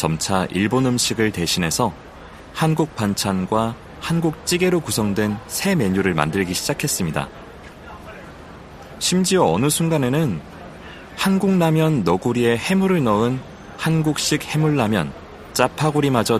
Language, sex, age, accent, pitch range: Korean, male, 30-49, native, 100-145 Hz